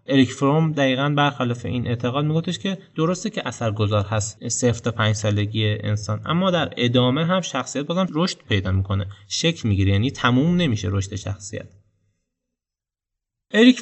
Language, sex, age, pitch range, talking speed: Persian, male, 20-39, 105-135 Hz, 150 wpm